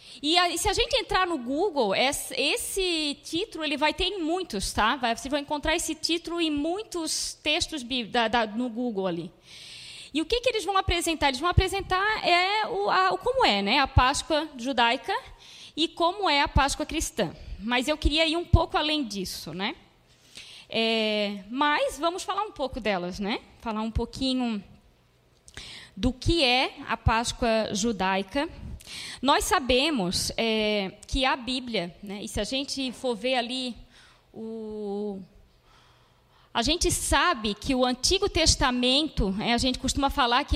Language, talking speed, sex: Portuguese, 165 wpm, female